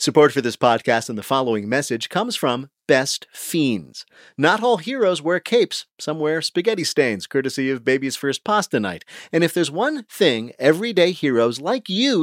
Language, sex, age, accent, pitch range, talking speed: English, male, 40-59, American, 115-170 Hz, 175 wpm